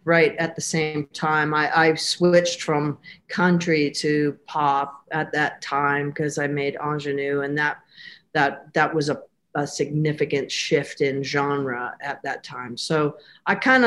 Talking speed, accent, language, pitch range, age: 155 wpm, American, English, 140-170 Hz, 50-69